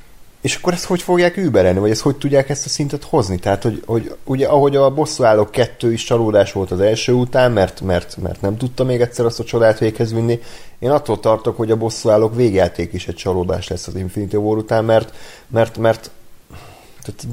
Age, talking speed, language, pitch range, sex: 30-49, 205 wpm, Hungarian, 95-120 Hz, male